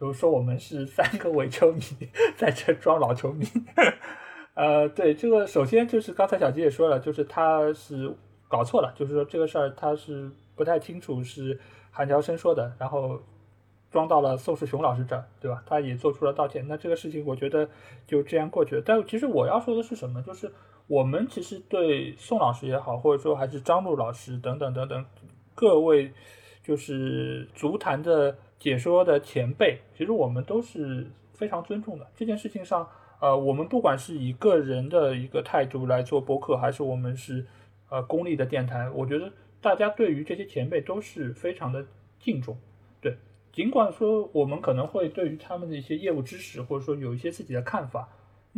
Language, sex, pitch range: Chinese, male, 125-160 Hz